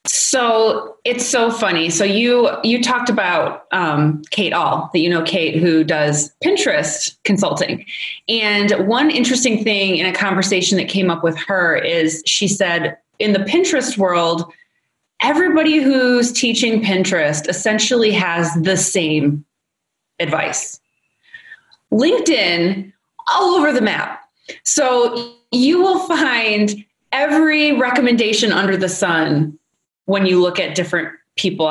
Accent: American